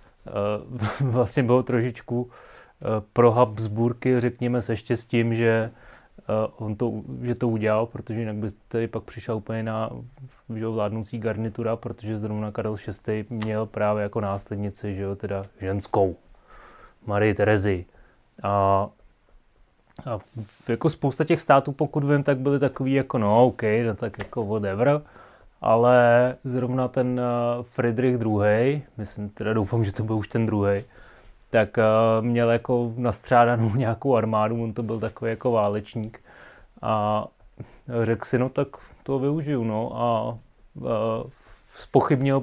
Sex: male